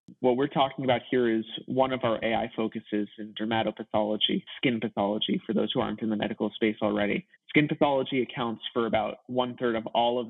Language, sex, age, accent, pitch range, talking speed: English, male, 20-39, American, 110-130 Hz, 190 wpm